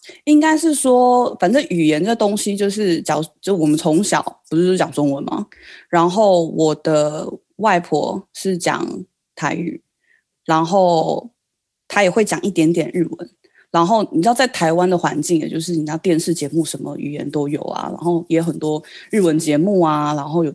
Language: Chinese